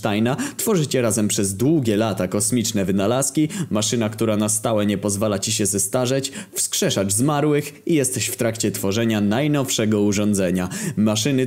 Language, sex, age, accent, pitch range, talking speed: Polish, male, 20-39, native, 105-145 Hz, 135 wpm